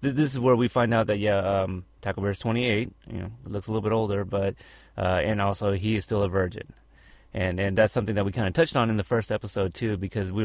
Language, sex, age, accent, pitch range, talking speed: English, male, 30-49, American, 100-125 Hz, 260 wpm